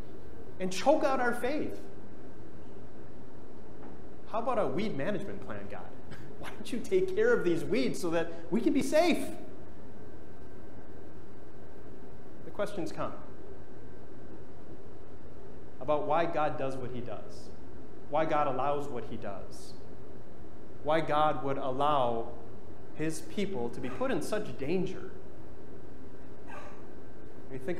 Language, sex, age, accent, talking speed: English, male, 30-49, American, 125 wpm